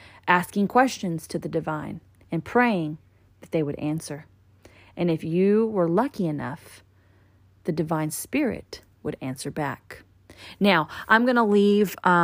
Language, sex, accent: English, female, American